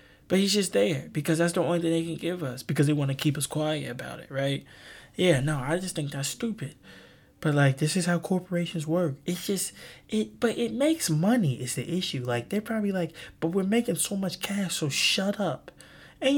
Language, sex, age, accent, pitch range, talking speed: English, male, 20-39, American, 125-170 Hz, 225 wpm